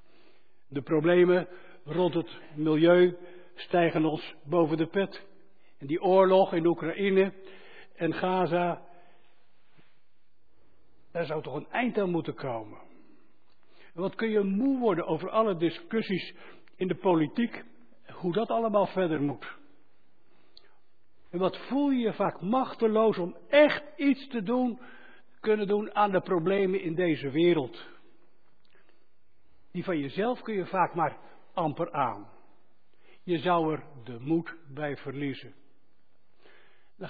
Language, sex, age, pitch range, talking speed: Dutch, male, 60-79, 155-200 Hz, 125 wpm